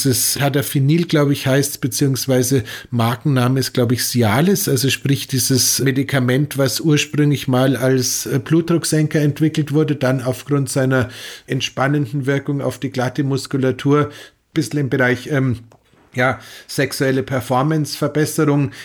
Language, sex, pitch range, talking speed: German, male, 130-150 Hz, 125 wpm